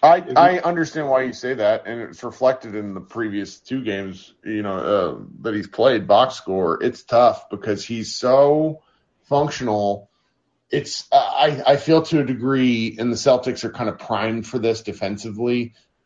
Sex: male